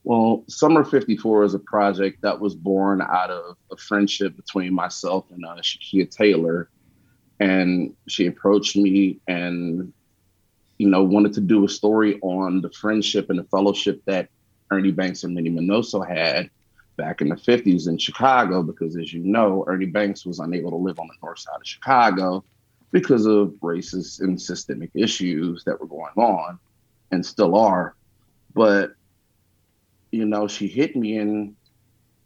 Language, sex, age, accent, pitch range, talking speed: English, male, 30-49, American, 95-110 Hz, 160 wpm